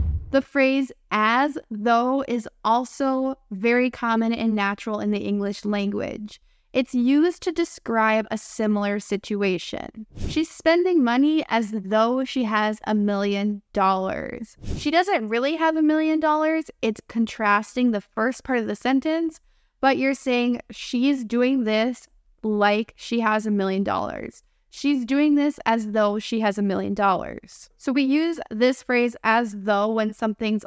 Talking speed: 150 wpm